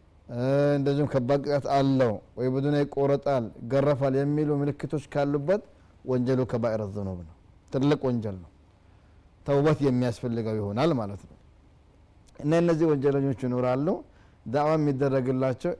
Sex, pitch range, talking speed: male, 115-140 Hz, 110 wpm